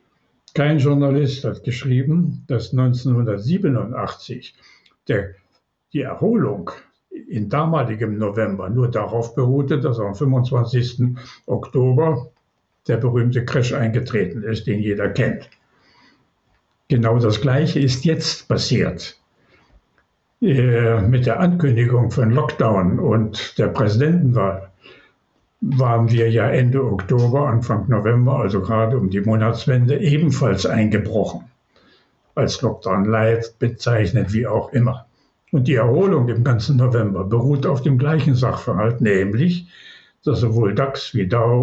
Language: German